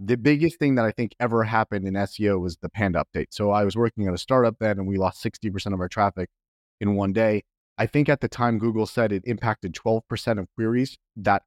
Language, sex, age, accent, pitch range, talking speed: English, male, 30-49, American, 95-115 Hz, 235 wpm